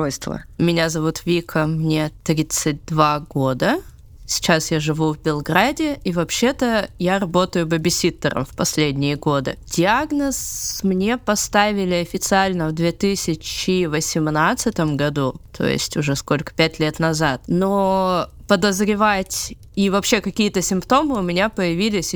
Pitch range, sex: 155-190 Hz, female